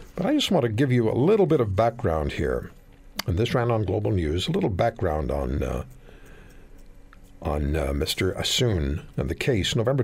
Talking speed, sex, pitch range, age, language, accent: 190 wpm, male, 95-135 Hz, 60-79, English, American